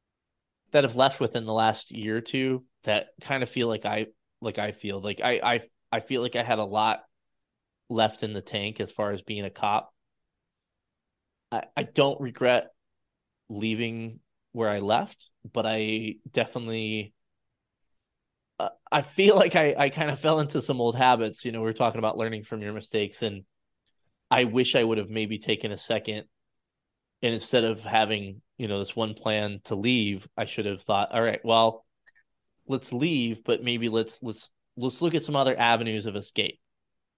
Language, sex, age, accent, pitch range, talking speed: English, male, 20-39, American, 105-125 Hz, 185 wpm